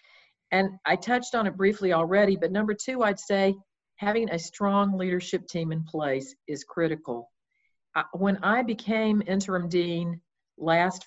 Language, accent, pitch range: English, American, 150-190 Hz